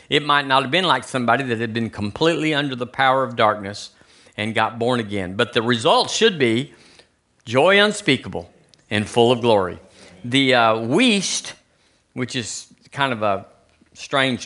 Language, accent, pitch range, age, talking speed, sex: English, American, 115-175 Hz, 50-69, 165 wpm, male